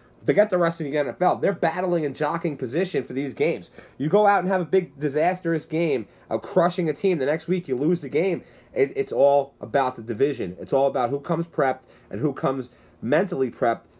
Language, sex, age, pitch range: English, male, 30-49, 115-150 Hz